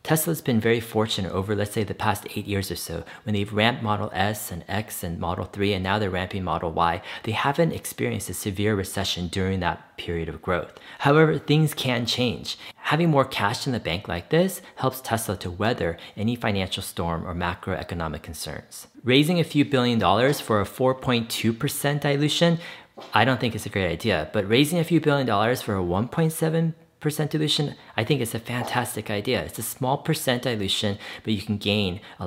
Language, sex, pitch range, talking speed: English, male, 95-130 Hz, 195 wpm